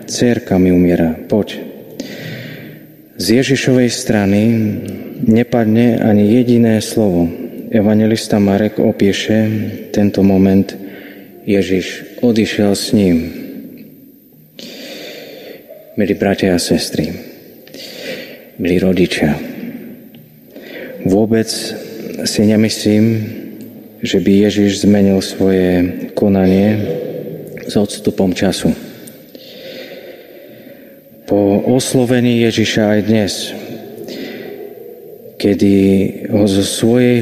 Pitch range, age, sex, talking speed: 95-115 Hz, 30-49, male, 75 wpm